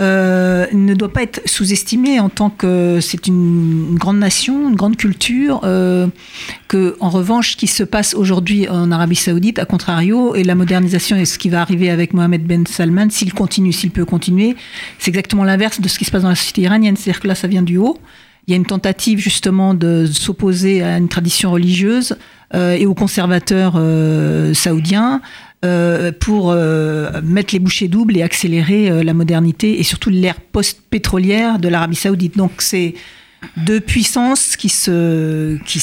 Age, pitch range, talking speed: 50-69, 175-205 Hz, 185 wpm